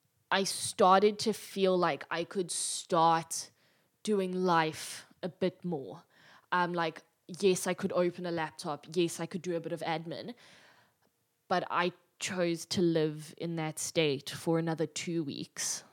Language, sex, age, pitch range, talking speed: English, female, 20-39, 160-185 Hz, 155 wpm